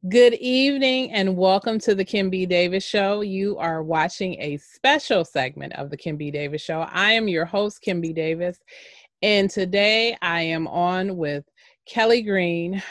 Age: 30-49